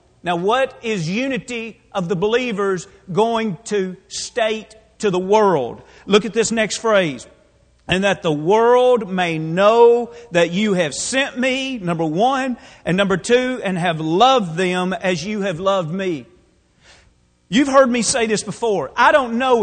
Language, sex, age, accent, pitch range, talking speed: English, male, 40-59, American, 160-230 Hz, 160 wpm